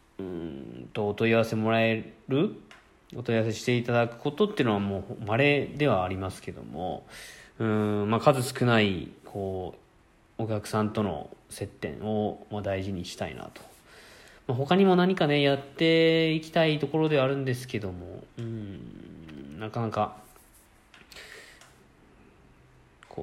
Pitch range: 95-125 Hz